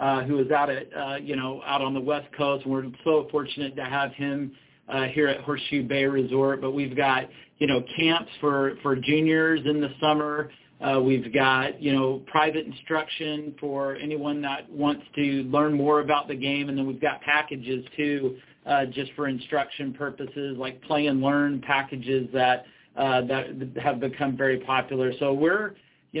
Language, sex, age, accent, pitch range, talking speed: English, male, 40-59, American, 130-145 Hz, 185 wpm